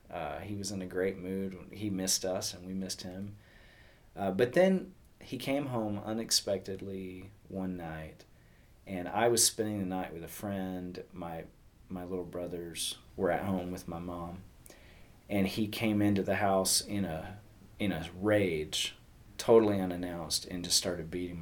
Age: 30-49